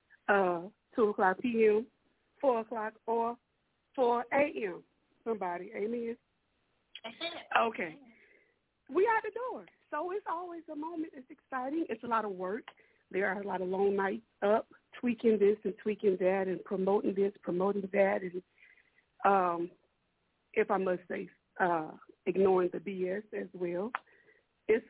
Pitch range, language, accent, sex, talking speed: 185-250 Hz, English, American, female, 145 wpm